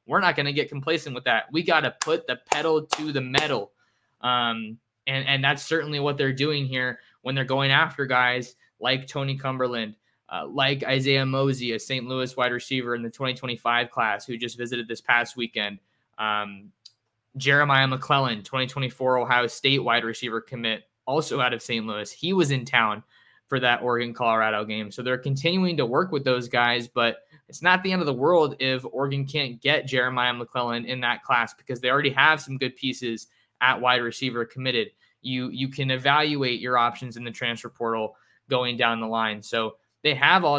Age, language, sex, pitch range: 20-39, English, male, 120-140 Hz